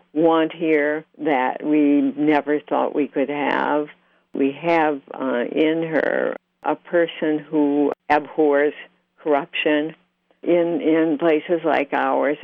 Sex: female